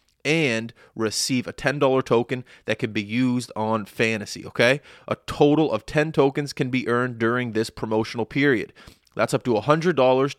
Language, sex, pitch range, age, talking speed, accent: English, male, 110-135 Hz, 30-49, 160 wpm, American